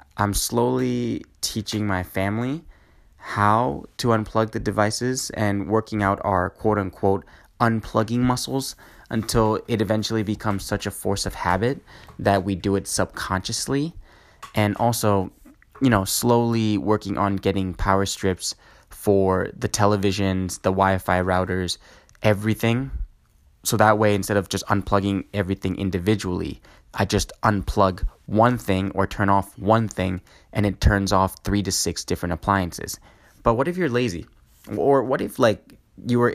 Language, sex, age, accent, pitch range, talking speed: English, male, 20-39, American, 95-115 Hz, 145 wpm